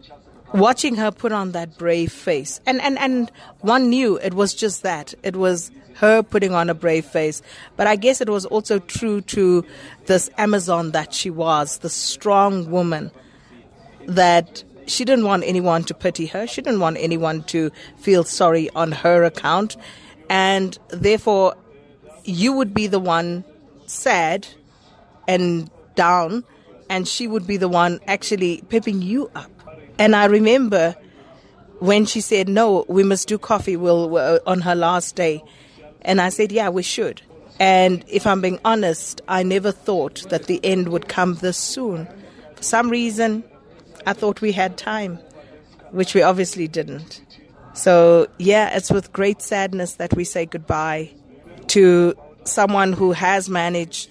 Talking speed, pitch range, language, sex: 155 wpm, 170-205 Hz, English, female